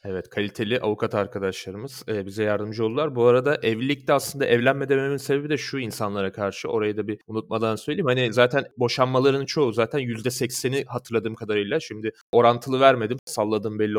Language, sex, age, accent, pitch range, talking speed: Turkish, male, 30-49, native, 105-125 Hz, 160 wpm